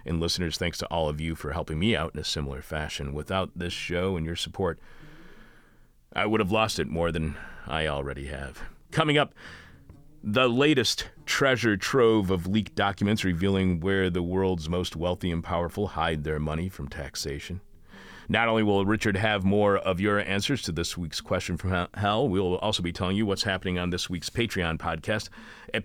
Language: English